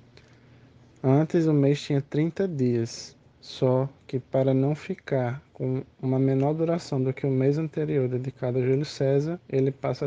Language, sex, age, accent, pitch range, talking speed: Portuguese, male, 20-39, Brazilian, 125-145 Hz, 155 wpm